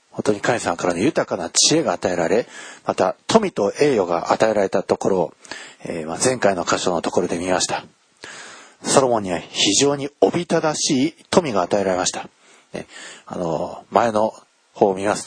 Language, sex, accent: Japanese, male, native